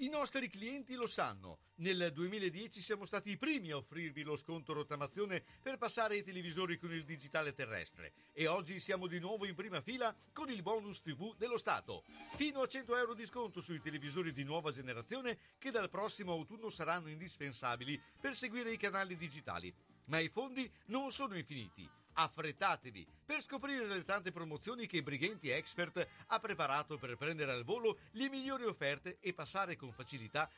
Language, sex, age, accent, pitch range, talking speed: Italian, male, 50-69, native, 150-225 Hz, 175 wpm